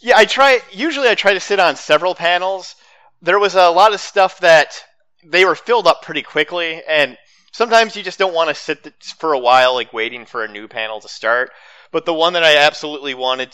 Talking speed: 220 wpm